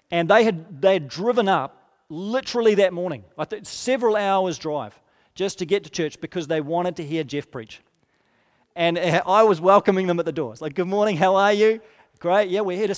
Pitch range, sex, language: 160-210 Hz, male, English